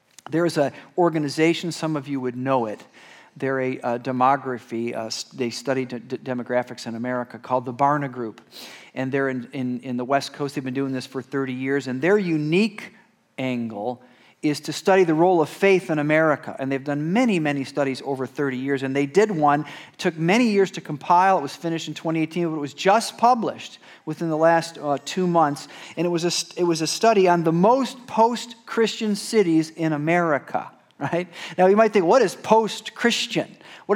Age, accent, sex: 40-59, American, male